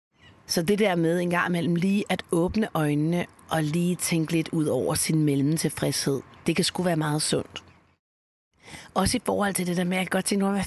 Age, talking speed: 30-49, 220 wpm